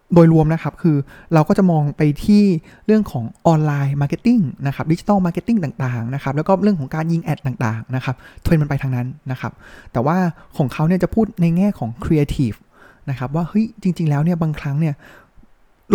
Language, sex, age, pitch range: Thai, male, 20-39, 135-185 Hz